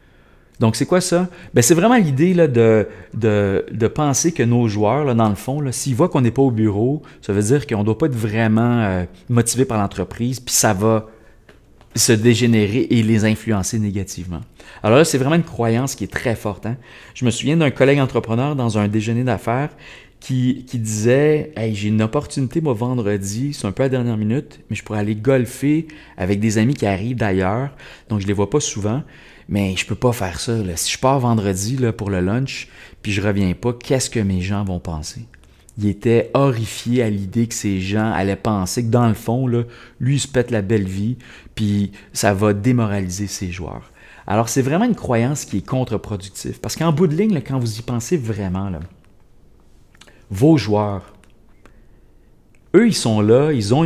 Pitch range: 105-130 Hz